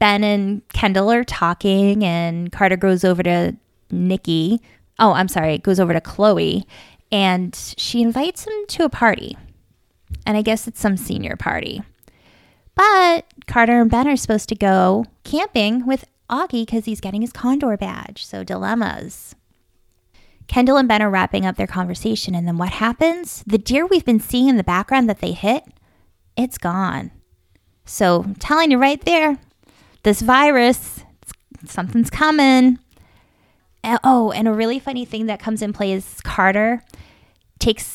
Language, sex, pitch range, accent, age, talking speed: English, female, 180-240 Hz, American, 20-39, 160 wpm